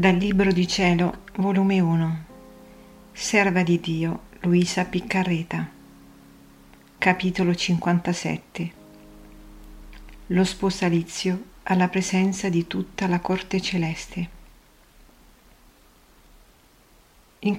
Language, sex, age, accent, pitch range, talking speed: Italian, female, 40-59, native, 165-195 Hz, 80 wpm